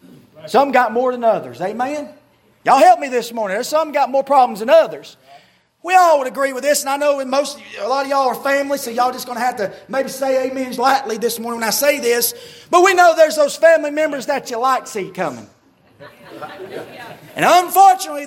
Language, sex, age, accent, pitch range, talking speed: English, male, 30-49, American, 215-315 Hz, 215 wpm